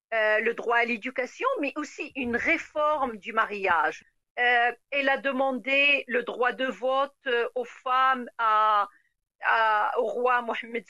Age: 50-69